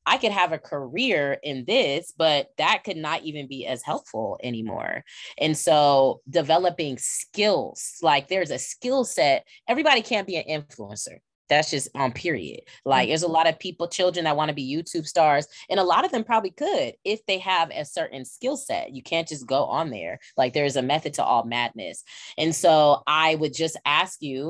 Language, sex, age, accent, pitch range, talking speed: English, female, 20-39, American, 135-195 Hz, 200 wpm